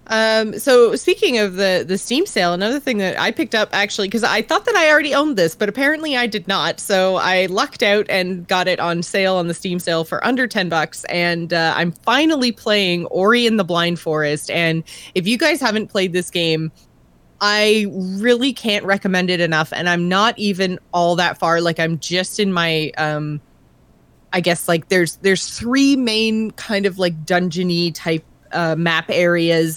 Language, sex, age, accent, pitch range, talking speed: English, female, 20-39, American, 170-210 Hz, 195 wpm